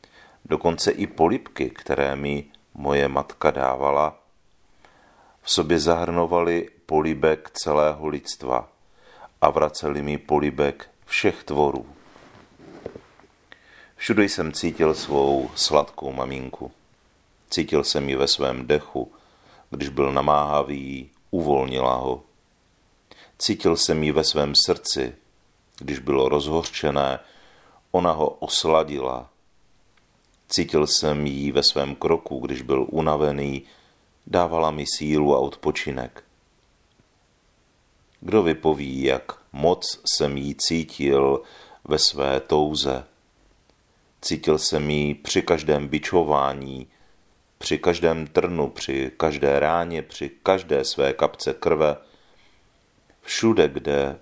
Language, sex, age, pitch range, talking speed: Czech, male, 40-59, 70-80 Hz, 100 wpm